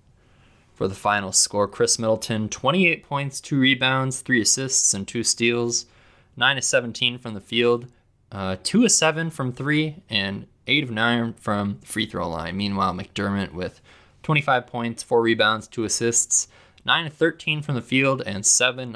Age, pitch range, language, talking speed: 20-39, 100-125 Hz, English, 165 wpm